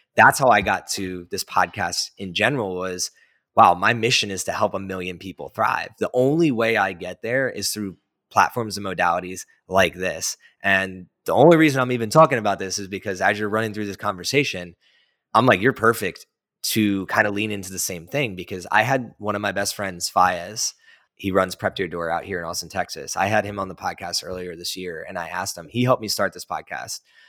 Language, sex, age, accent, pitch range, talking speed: English, male, 20-39, American, 90-105 Hz, 220 wpm